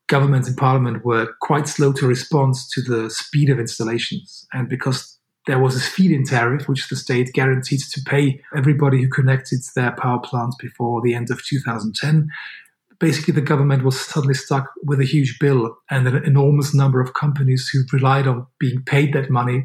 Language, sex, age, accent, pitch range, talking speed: English, male, 40-59, German, 125-140 Hz, 185 wpm